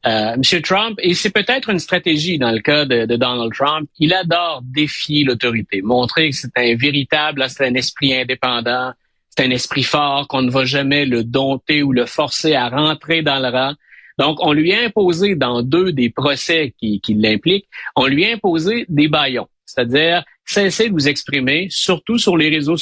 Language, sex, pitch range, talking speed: French, male, 130-180 Hz, 190 wpm